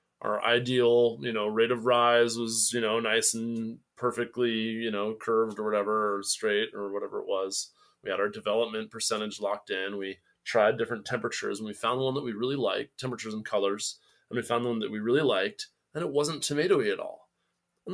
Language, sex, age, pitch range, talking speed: English, male, 20-39, 105-135 Hz, 210 wpm